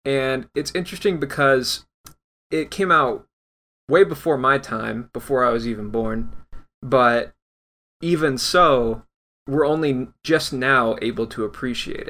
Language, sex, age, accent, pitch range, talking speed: English, male, 20-39, American, 120-155 Hz, 130 wpm